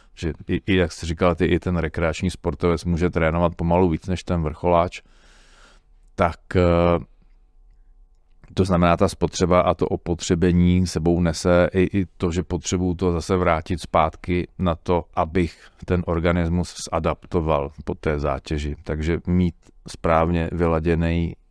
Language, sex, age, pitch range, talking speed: Czech, male, 40-59, 80-90 Hz, 140 wpm